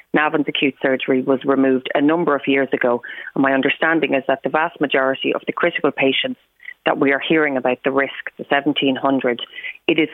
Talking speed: 195 wpm